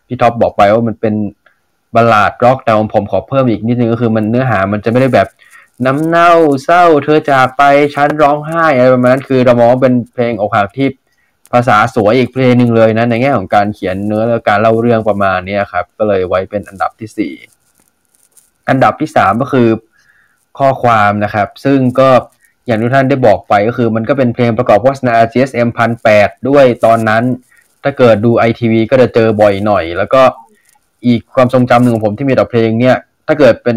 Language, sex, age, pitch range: Thai, male, 20-39, 110-130 Hz